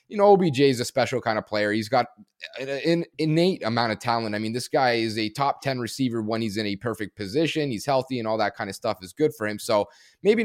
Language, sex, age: English, male, 20-39